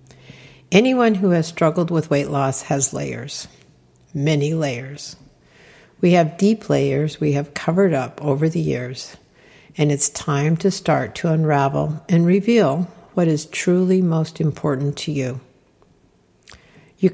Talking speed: 135 wpm